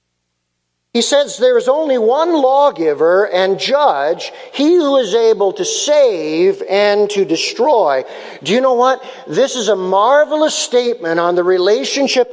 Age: 50-69